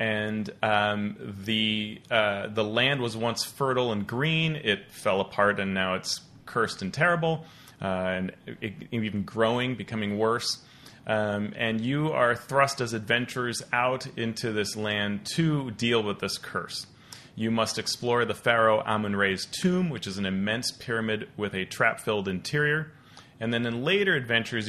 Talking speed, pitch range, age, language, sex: 160 wpm, 105-130 Hz, 30-49, English, male